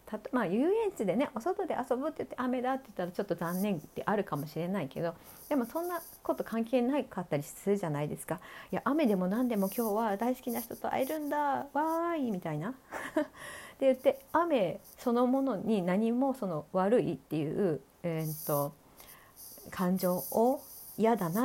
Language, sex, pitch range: Japanese, female, 185-275 Hz